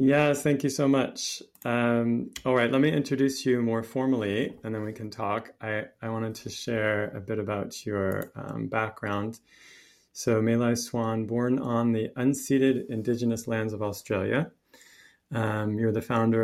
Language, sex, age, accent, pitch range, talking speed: English, male, 30-49, American, 100-115 Hz, 165 wpm